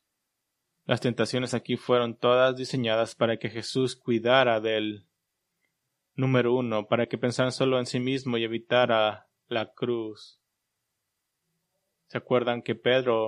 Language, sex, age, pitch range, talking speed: English, male, 20-39, 115-135 Hz, 125 wpm